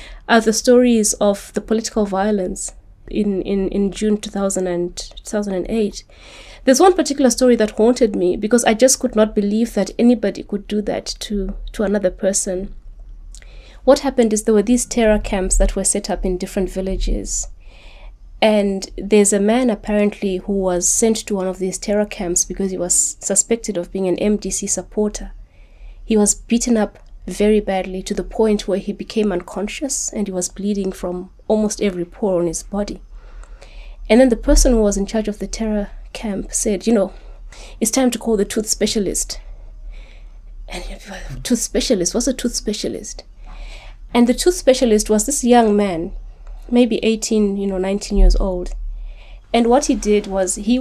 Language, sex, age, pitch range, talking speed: English, female, 20-39, 185-225 Hz, 175 wpm